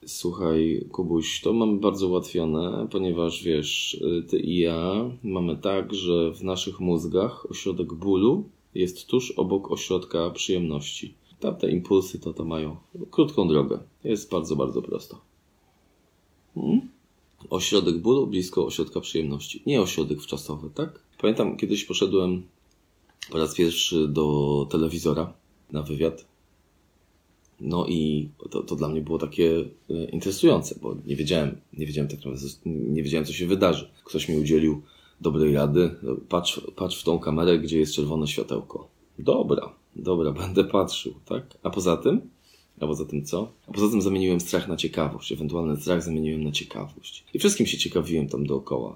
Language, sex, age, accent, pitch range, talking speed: Polish, male, 20-39, native, 75-90 Hz, 145 wpm